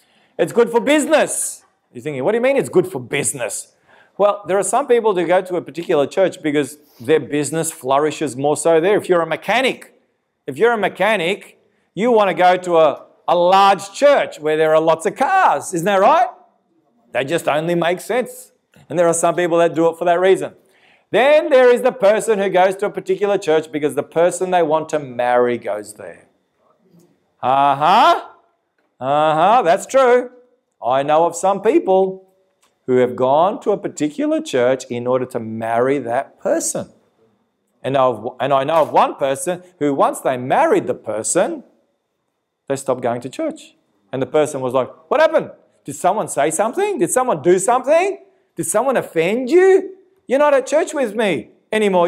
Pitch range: 150-235 Hz